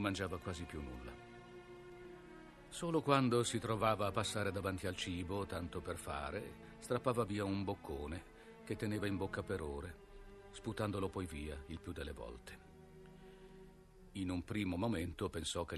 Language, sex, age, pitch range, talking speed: Italian, male, 50-69, 75-115 Hz, 150 wpm